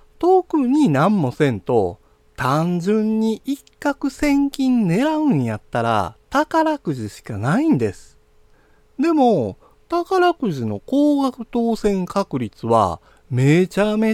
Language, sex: Japanese, male